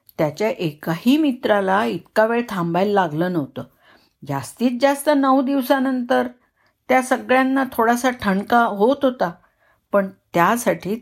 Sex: female